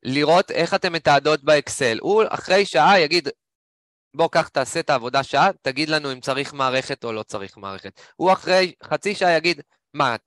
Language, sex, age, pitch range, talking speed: Hebrew, male, 20-39, 120-170 Hz, 180 wpm